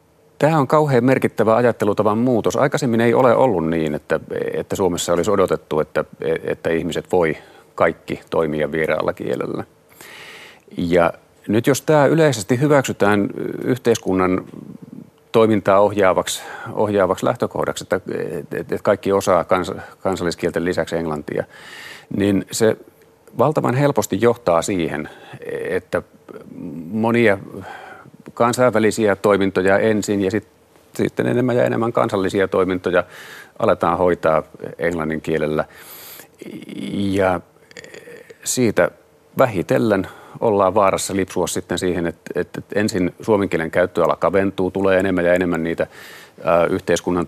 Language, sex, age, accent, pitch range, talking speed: Finnish, male, 40-59, native, 90-130 Hz, 105 wpm